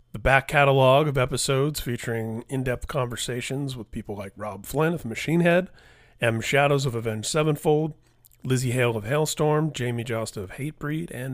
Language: English